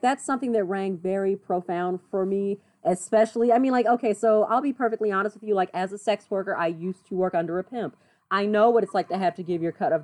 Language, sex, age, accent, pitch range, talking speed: English, female, 30-49, American, 185-240 Hz, 265 wpm